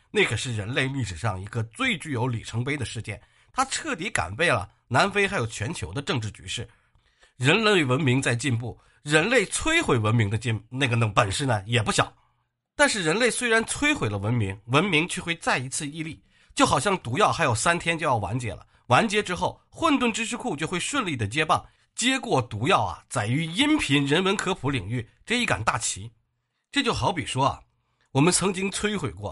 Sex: male